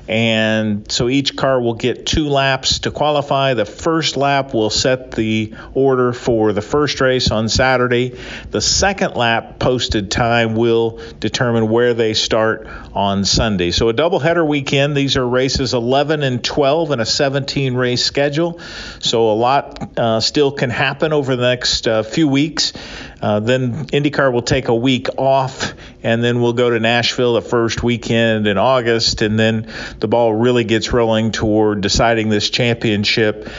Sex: male